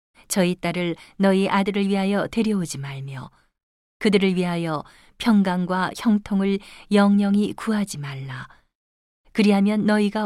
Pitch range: 160-205 Hz